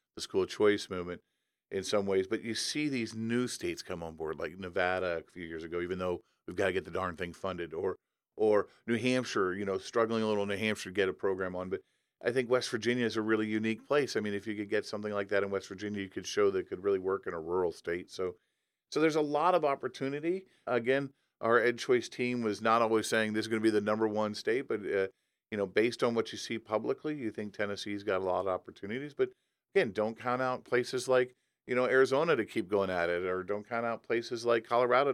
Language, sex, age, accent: English, male, 40-59, American